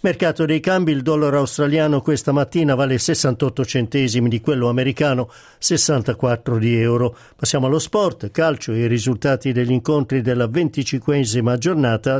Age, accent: 50-69, native